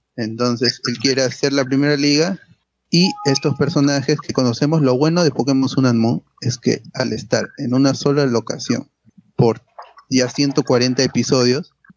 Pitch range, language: 120-145 Hz, Spanish